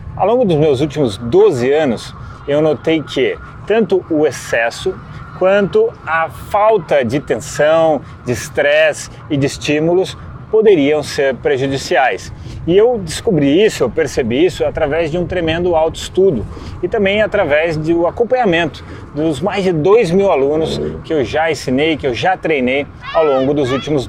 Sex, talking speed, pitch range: male, 150 wpm, 135-200 Hz